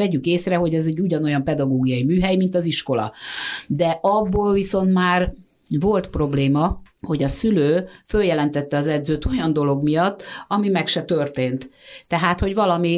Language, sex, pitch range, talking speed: Hungarian, female, 135-175 Hz, 155 wpm